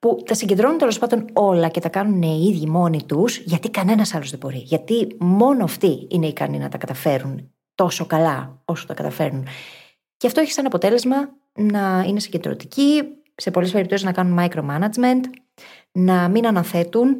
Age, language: 20-39, Greek